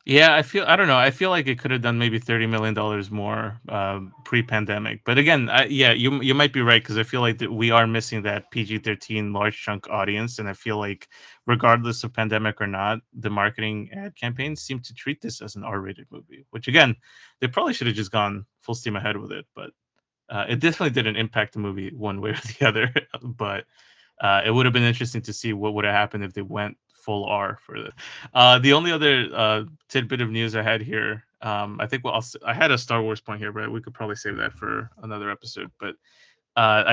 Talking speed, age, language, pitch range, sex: 230 wpm, 20-39, English, 105-125 Hz, male